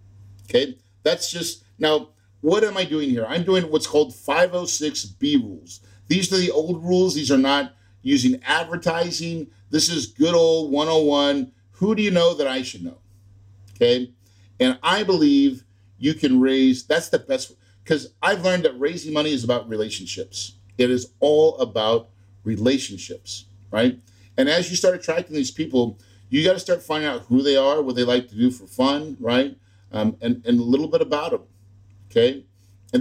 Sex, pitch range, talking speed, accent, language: male, 100-155 Hz, 180 wpm, American, English